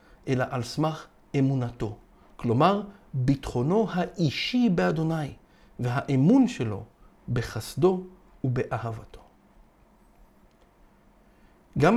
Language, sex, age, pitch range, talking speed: Hebrew, male, 50-69, 130-195 Hz, 65 wpm